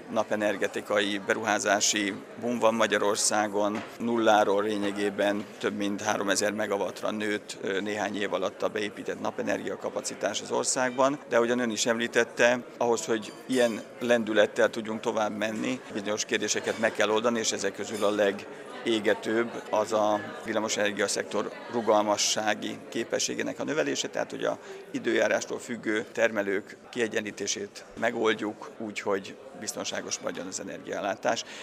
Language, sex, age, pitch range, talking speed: Hungarian, male, 50-69, 105-115 Hz, 120 wpm